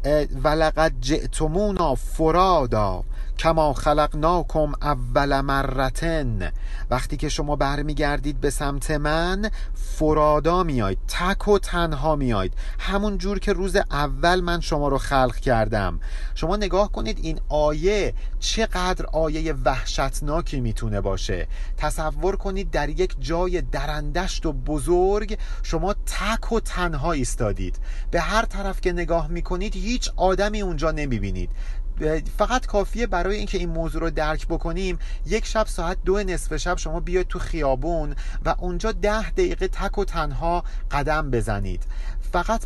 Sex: male